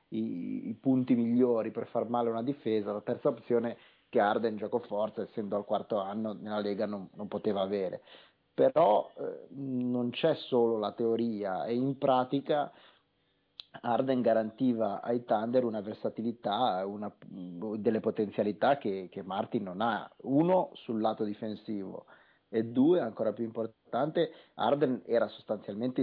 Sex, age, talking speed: male, 30-49, 140 wpm